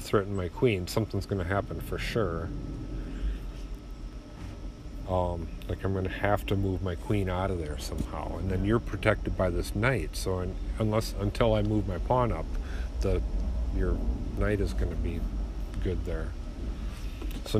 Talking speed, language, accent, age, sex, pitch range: 165 wpm, English, American, 40-59, male, 80-110 Hz